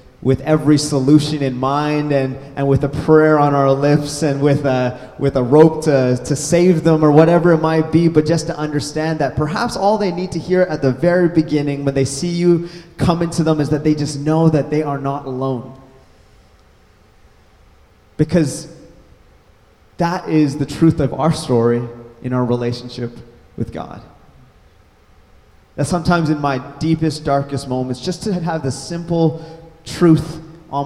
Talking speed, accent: 170 wpm, American